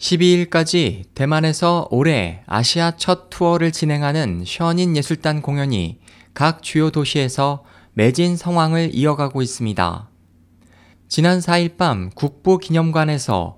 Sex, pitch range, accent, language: male, 105-170 Hz, native, Korean